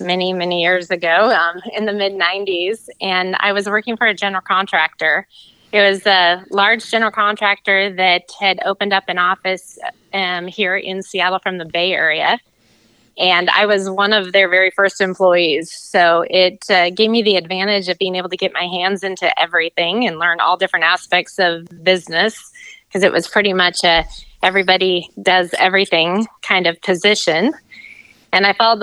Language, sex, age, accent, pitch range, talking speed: English, female, 20-39, American, 180-205 Hz, 170 wpm